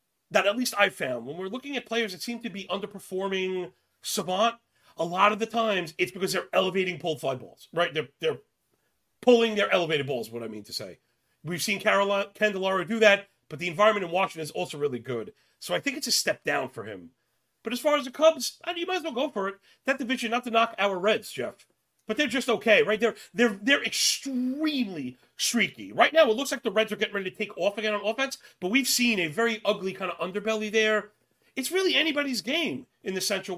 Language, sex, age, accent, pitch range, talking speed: English, male, 40-59, American, 185-250 Hz, 235 wpm